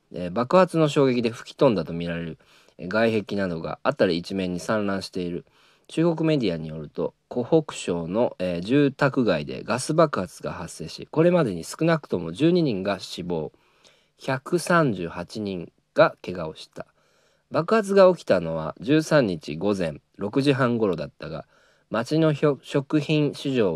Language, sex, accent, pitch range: Japanese, male, native, 90-155 Hz